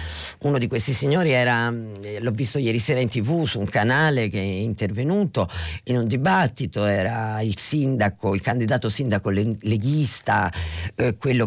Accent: native